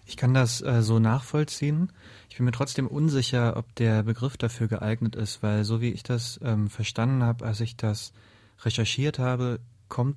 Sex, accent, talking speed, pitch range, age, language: male, German, 185 wpm, 105-120 Hz, 30-49, German